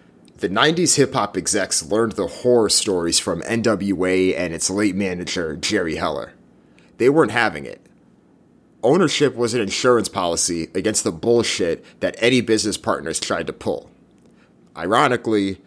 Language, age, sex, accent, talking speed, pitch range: English, 30-49, male, American, 140 wpm, 95-120 Hz